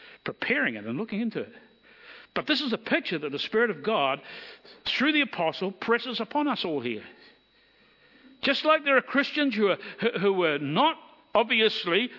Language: English